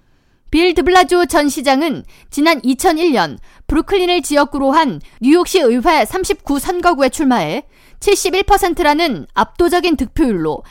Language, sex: Korean, female